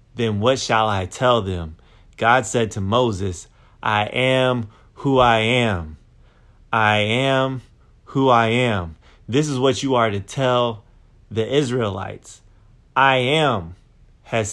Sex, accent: male, American